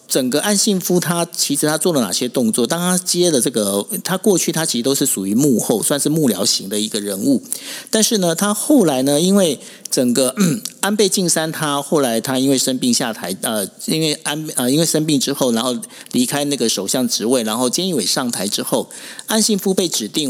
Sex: male